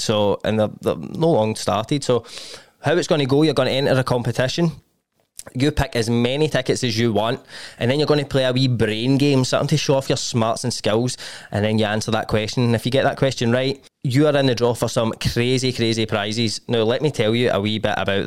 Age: 20-39